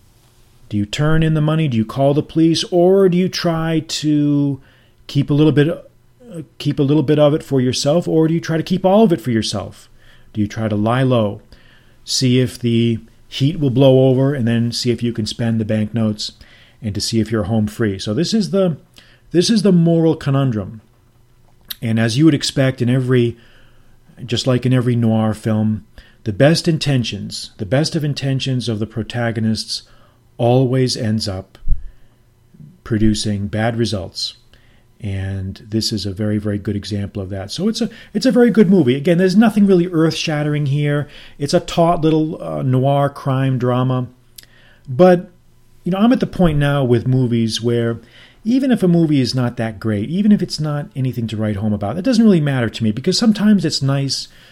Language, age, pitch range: English, 40-59, 115-155 Hz